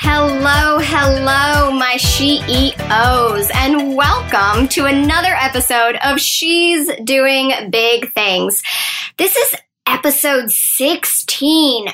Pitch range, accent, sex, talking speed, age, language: 235-315 Hz, American, male, 90 wpm, 10-29, English